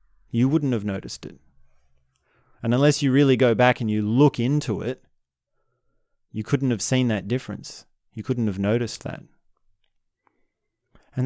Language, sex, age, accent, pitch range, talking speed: English, male, 30-49, Australian, 110-145 Hz, 150 wpm